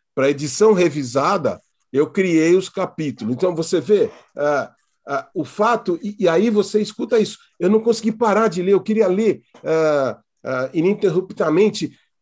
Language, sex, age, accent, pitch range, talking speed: Portuguese, male, 50-69, Brazilian, 145-205 Hz, 140 wpm